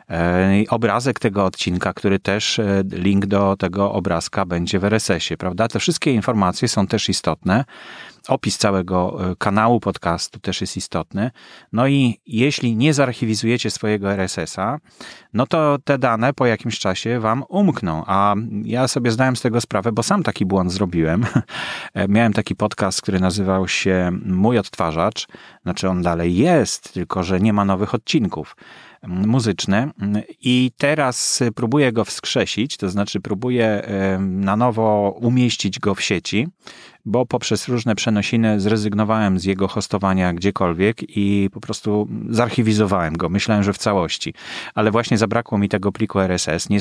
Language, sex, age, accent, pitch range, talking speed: English, male, 30-49, Polish, 95-120 Hz, 145 wpm